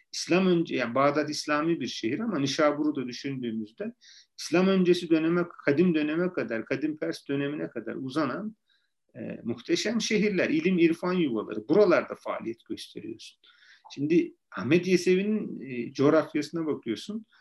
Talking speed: 125 wpm